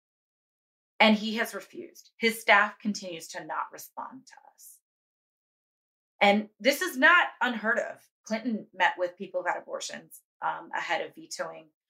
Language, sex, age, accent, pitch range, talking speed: English, female, 30-49, American, 190-275 Hz, 145 wpm